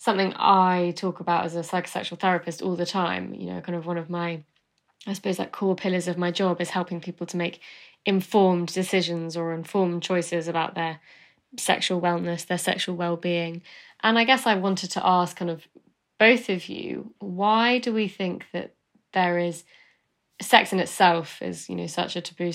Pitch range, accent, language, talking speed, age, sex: 170-185 Hz, British, English, 190 wpm, 20-39, female